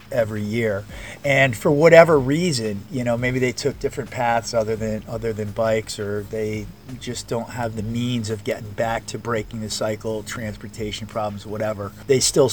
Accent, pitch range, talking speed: American, 105-130 Hz, 175 wpm